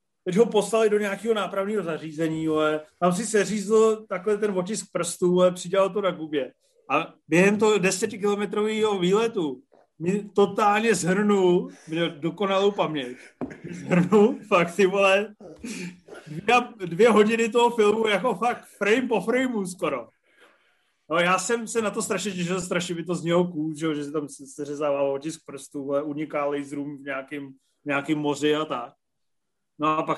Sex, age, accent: male, 30-49, native